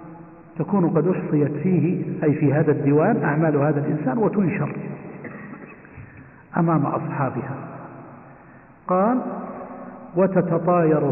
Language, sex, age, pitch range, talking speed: Arabic, male, 50-69, 145-175 Hz, 85 wpm